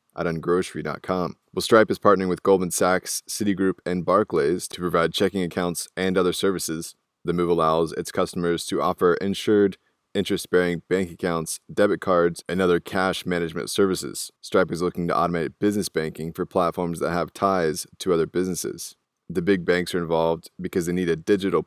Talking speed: 170 wpm